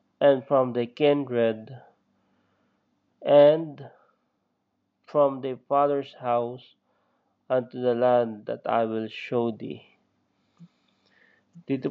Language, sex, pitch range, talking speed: English, male, 120-140 Hz, 90 wpm